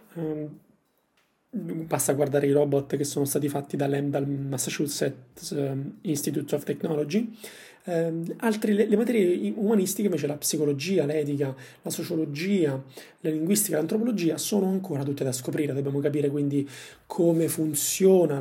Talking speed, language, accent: 125 wpm, Italian, native